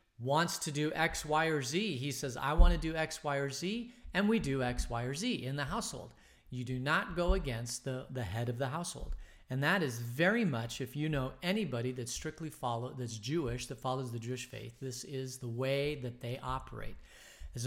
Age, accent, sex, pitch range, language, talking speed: 40-59, American, male, 125-160 Hz, English, 220 wpm